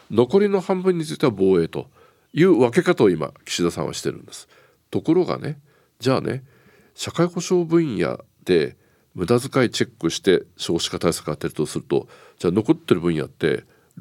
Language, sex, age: Japanese, male, 50-69